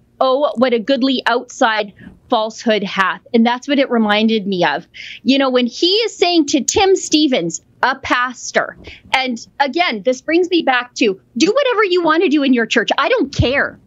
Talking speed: 190 wpm